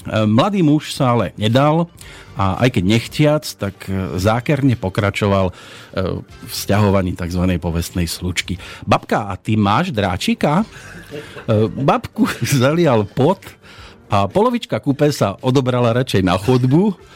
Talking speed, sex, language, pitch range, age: 115 wpm, male, Slovak, 95-140 Hz, 50-69